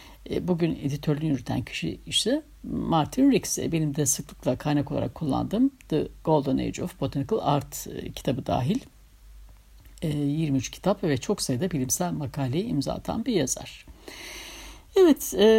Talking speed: 125 wpm